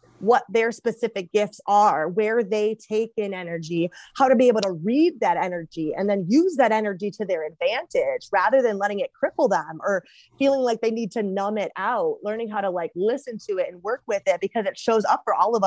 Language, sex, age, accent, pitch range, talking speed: English, female, 30-49, American, 195-255 Hz, 225 wpm